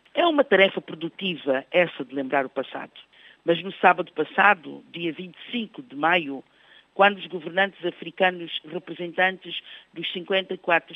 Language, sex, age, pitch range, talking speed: Portuguese, female, 50-69, 155-195 Hz, 130 wpm